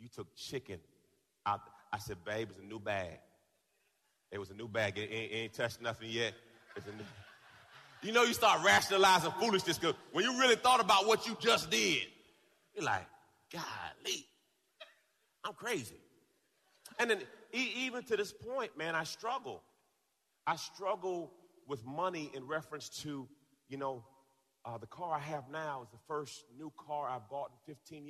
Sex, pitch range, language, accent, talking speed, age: male, 135-185 Hz, English, American, 165 wpm, 30-49